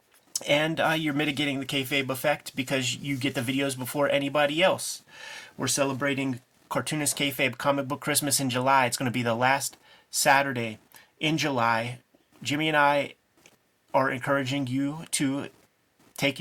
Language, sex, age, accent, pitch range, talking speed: English, male, 30-49, American, 125-145 Hz, 150 wpm